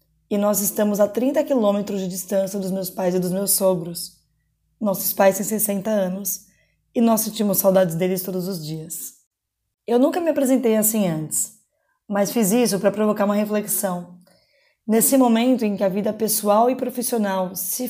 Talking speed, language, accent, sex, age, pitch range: 170 wpm, Portuguese, Brazilian, female, 20-39, 180-225 Hz